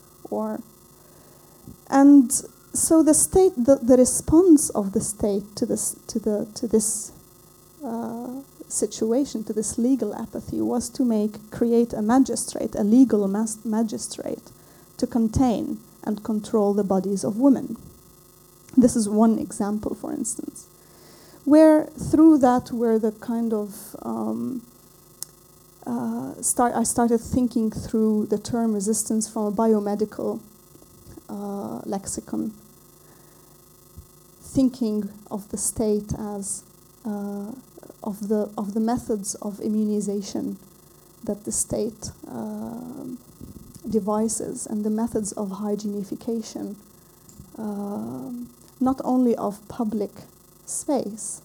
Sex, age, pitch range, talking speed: female, 30-49, 205-245 Hz, 115 wpm